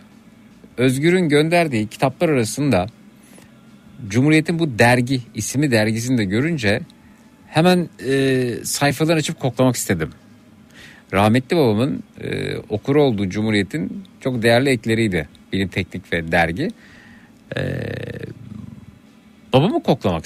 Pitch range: 110-155 Hz